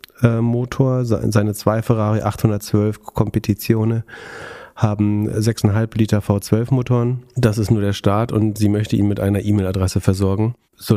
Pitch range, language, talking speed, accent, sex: 95-110 Hz, German, 135 wpm, German, male